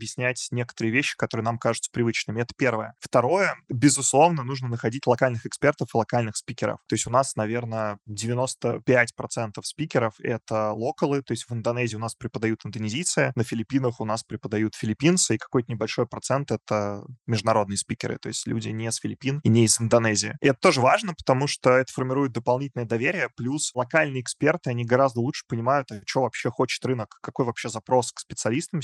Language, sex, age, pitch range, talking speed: Russian, male, 20-39, 115-130 Hz, 175 wpm